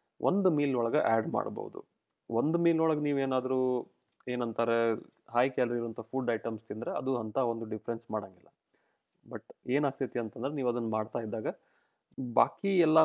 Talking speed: 135 wpm